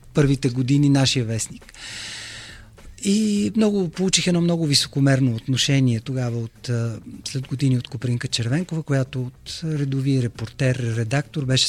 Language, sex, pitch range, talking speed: Bulgarian, male, 110-140 Hz, 125 wpm